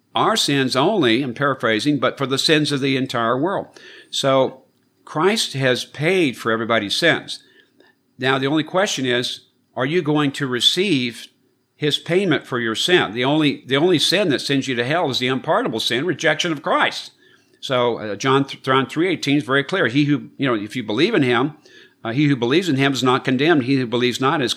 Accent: American